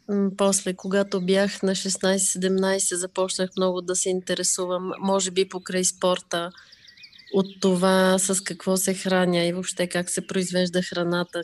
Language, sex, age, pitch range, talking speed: Bulgarian, female, 30-49, 180-200 Hz, 135 wpm